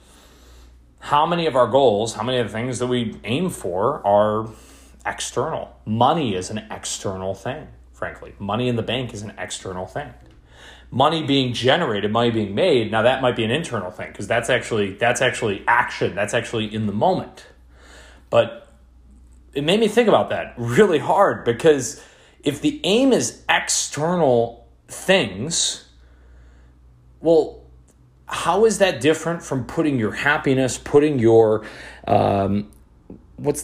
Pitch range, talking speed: 95-125 Hz, 145 wpm